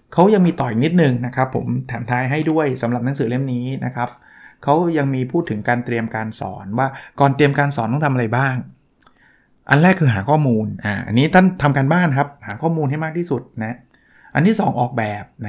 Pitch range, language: 120-150 Hz, Thai